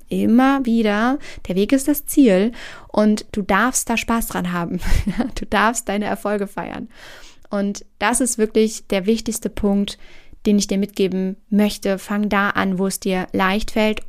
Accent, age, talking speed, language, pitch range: German, 20-39, 165 wpm, German, 195-230 Hz